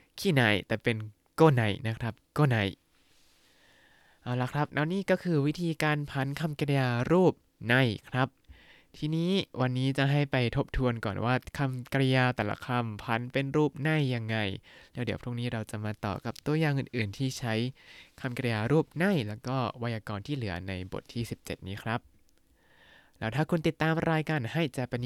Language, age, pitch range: Thai, 20-39, 105-135 Hz